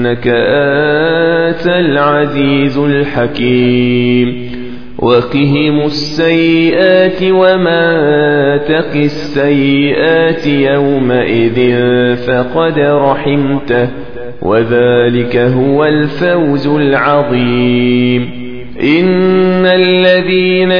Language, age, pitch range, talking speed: Arabic, 40-59, 125-165 Hz, 50 wpm